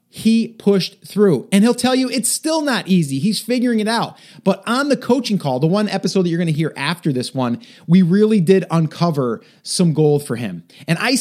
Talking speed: 215 wpm